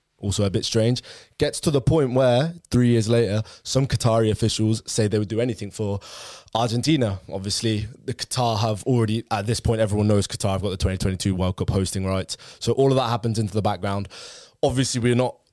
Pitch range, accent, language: 100-120 Hz, British, English